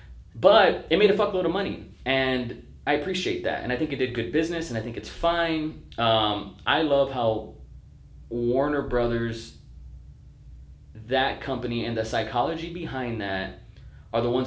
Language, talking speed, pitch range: English, 160 wpm, 105-135 Hz